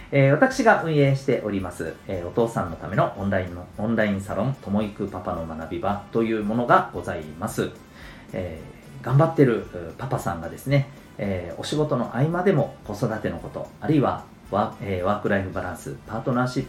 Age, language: 40-59, Japanese